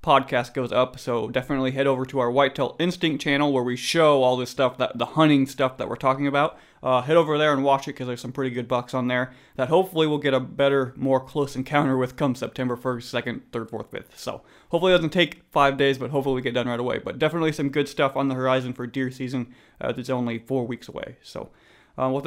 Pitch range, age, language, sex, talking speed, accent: 130-145 Hz, 30-49, English, male, 250 wpm, American